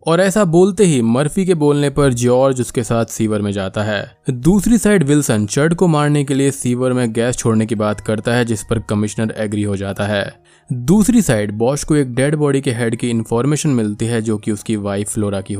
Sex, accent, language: male, native, Hindi